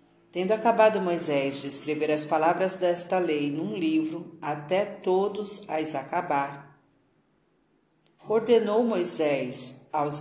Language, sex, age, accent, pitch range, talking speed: Portuguese, female, 40-59, Brazilian, 150-190 Hz, 105 wpm